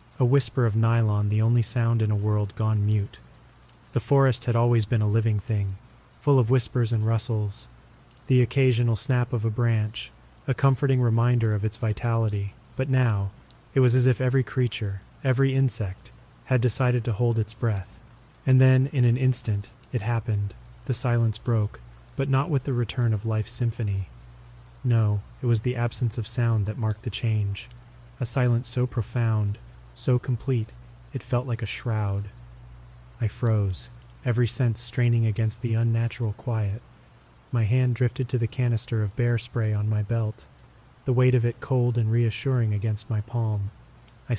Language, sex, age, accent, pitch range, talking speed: English, male, 30-49, American, 110-125 Hz, 170 wpm